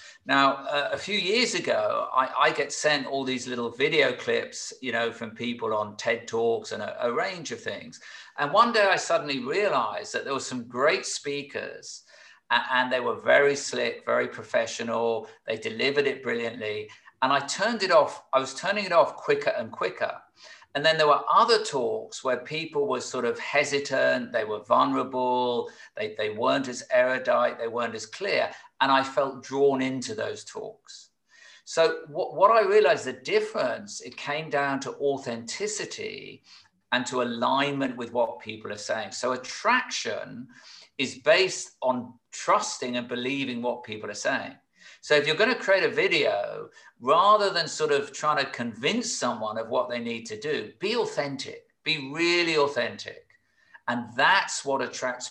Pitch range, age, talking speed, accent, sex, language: 120-195 Hz, 50-69, 170 wpm, British, male, English